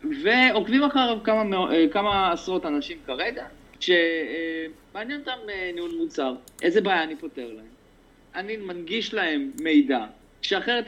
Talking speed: 115 wpm